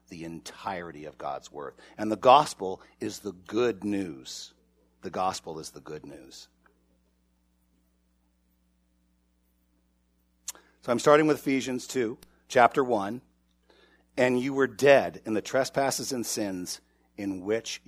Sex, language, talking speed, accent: male, English, 125 wpm, American